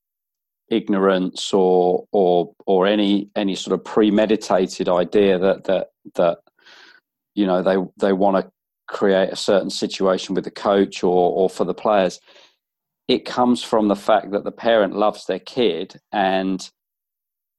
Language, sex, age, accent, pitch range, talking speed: English, male, 40-59, British, 95-105 Hz, 145 wpm